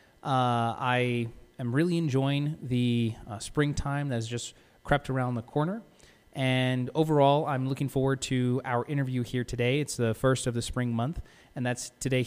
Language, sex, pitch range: English, male, 120-145 Hz